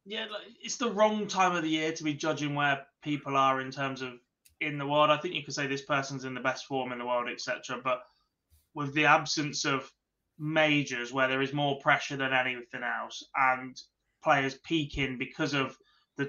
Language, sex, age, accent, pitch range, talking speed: English, male, 20-39, British, 130-160 Hz, 205 wpm